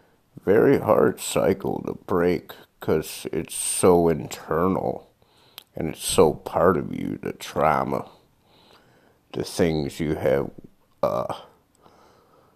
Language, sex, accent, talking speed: English, male, American, 105 wpm